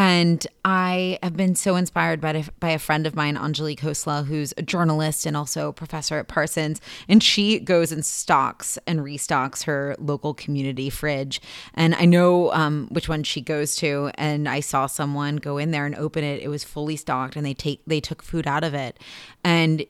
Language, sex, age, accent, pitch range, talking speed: English, female, 20-39, American, 140-165 Hz, 205 wpm